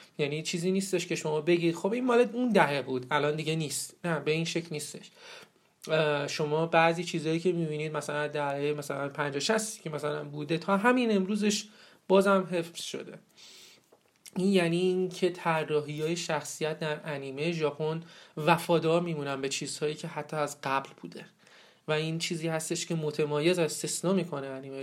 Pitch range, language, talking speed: 150-180 Hz, Persian, 160 wpm